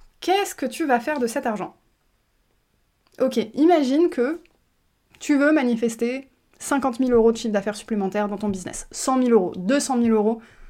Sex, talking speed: female, 170 wpm